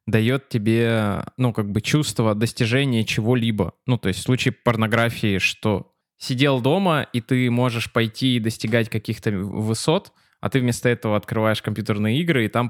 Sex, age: male, 20-39